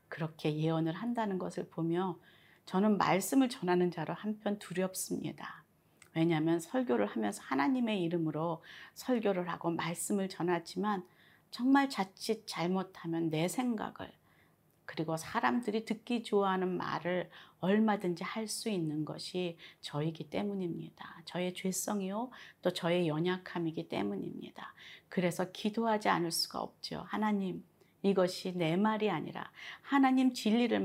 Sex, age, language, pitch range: female, 40-59, Korean, 170-225 Hz